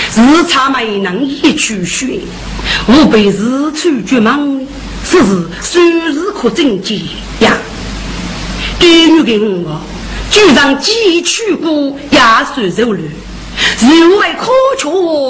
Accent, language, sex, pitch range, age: native, Chinese, female, 200-340 Hz, 40-59